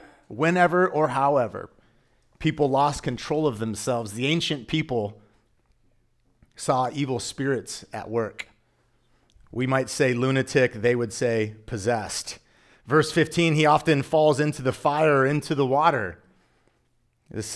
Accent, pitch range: American, 115-145 Hz